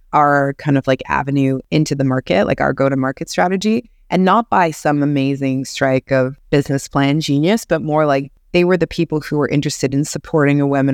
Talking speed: 190 wpm